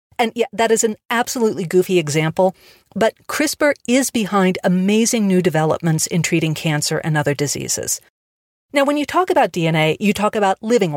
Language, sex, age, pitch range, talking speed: English, female, 50-69, 165-225 Hz, 170 wpm